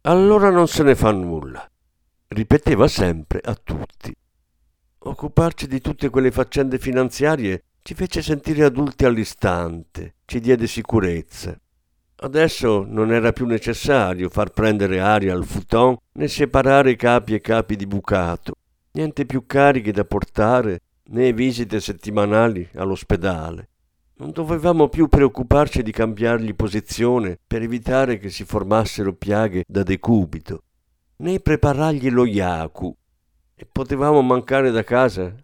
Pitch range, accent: 90-130 Hz, native